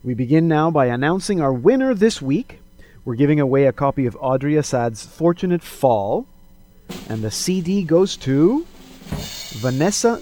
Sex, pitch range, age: male, 120-160 Hz, 30-49